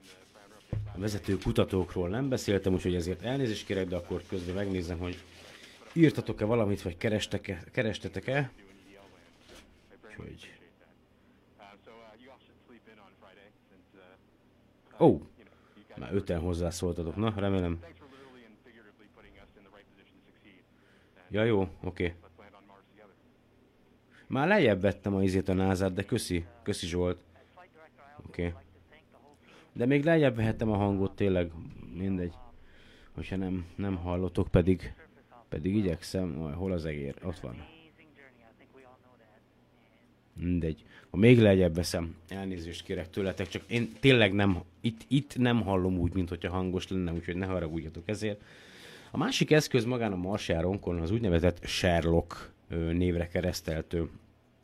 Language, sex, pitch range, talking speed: Hungarian, male, 90-110 Hz, 105 wpm